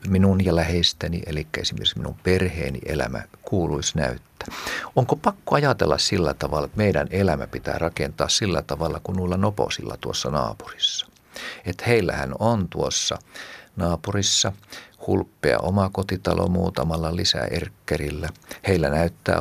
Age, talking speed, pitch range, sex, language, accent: 50-69, 120 wpm, 75-90 Hz, male, Finnish, native